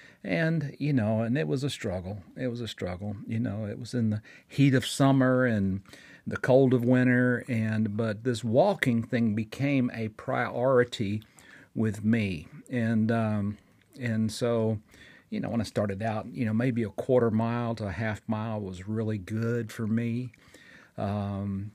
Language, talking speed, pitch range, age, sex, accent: English, 170 wpm, 110-135 Hz, 50-69, male, American